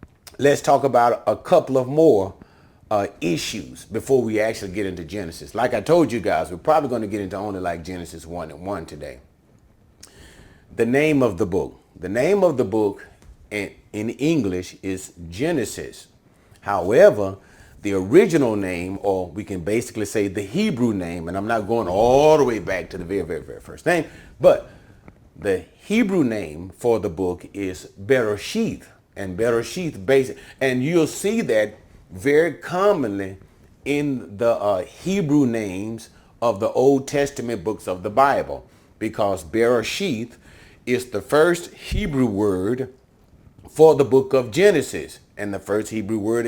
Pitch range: 100-135 Hz